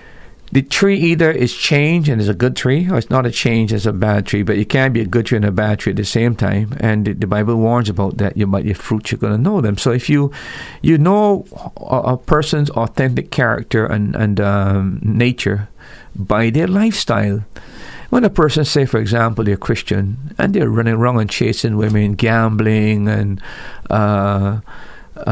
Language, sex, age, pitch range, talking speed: English, male, 50-69, 110-150 Hz, 205 wpm